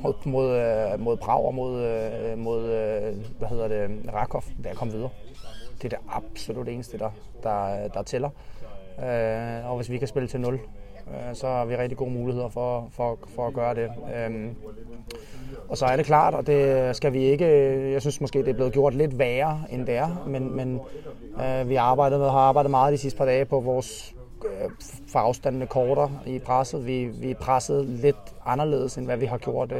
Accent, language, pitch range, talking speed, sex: native, Danish, 115-140 Hz, 185 wpm, male